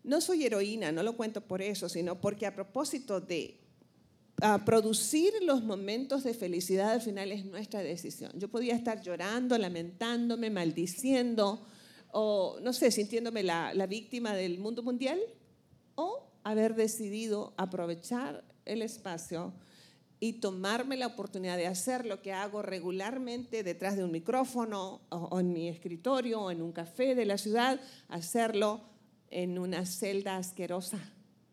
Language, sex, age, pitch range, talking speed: Spanish, female, 50-69, 185-230 Hz, 145 wpm